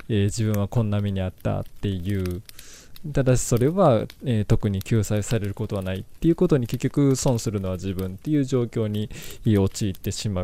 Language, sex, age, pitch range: Japanese, male, 20-39, 100-125 Hz